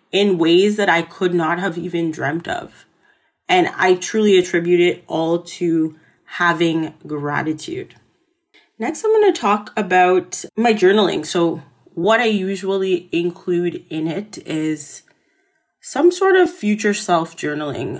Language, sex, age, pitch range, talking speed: English, female, 30-49, 165-215 Hz, 135 wpm